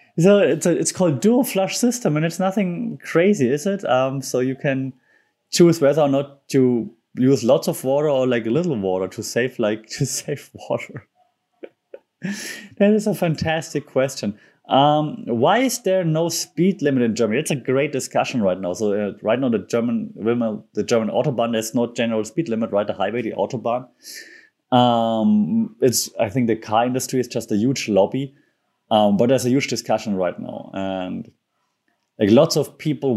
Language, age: English, 20-39